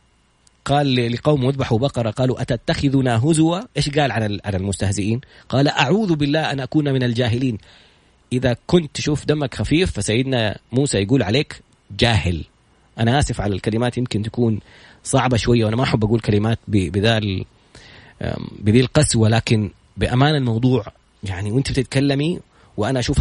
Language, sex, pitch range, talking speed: Arabic, male, 110-140 Hz, 135 wpm